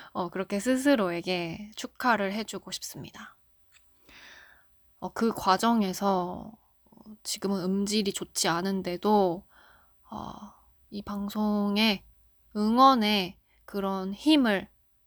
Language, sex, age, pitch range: Korean, female, 20-39, 185-245 Hz